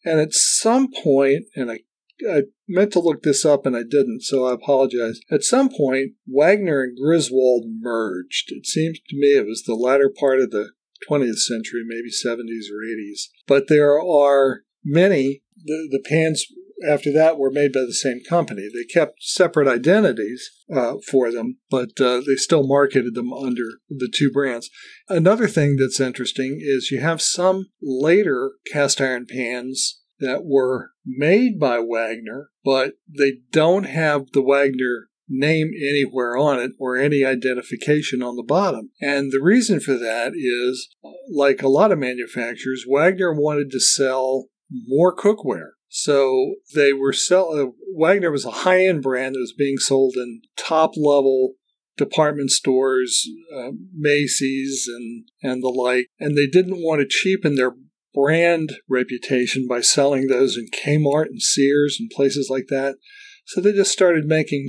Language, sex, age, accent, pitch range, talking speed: English, male, 50-69, American, 130-160 Hz, 160 wpm